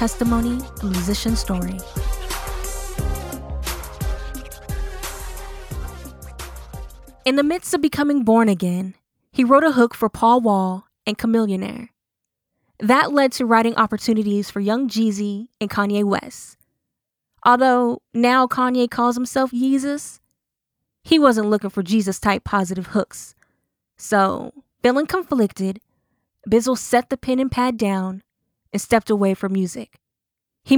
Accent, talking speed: American, 115 wpm